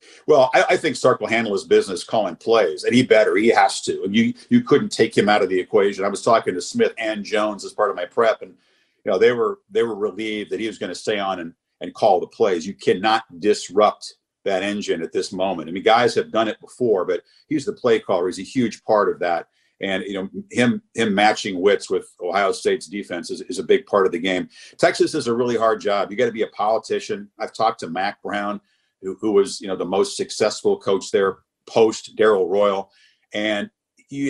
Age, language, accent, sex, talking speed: 50-69, English, American, male, 235 wpm